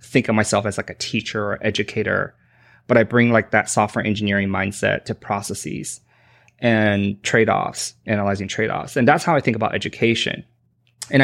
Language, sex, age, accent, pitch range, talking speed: English, male, 20-39, American, 100-120 Hz, 175 wpm